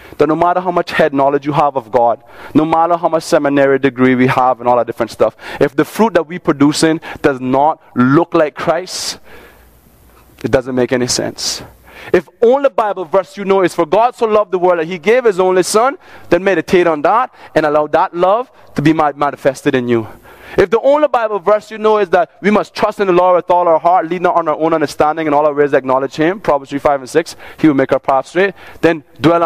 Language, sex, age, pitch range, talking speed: English, male, 20-39, 125-175 Hz, 240 wpm